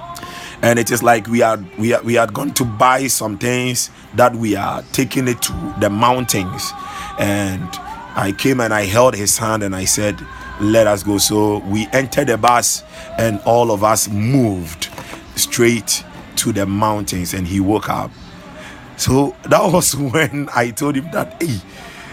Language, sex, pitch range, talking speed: English, male, 105-130 Hz, 175 wpm